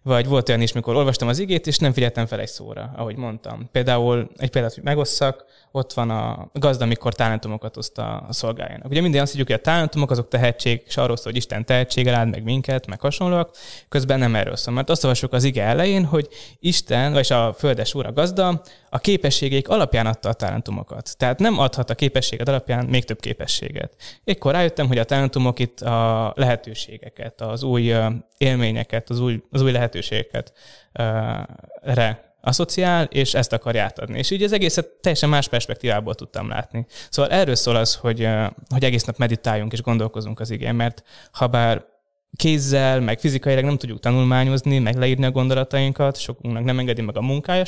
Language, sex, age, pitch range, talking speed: Hungarian, male, 20-39, 115-140 Hz, 185 wpm